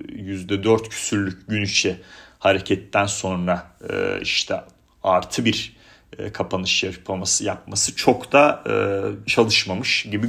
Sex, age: male, 40-59